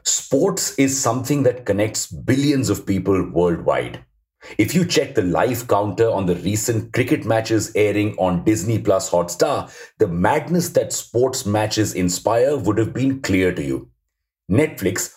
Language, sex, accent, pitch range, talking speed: English, male, Indian, 100-140 Hz, 155 wpm